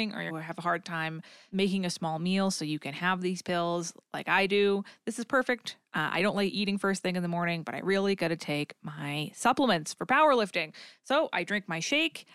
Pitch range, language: 170-225 Hz, English